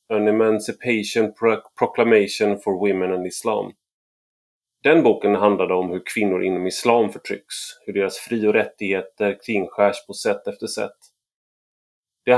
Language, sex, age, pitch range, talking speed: Swedish, male, 30-49, 100-140 Hz, 130 wpm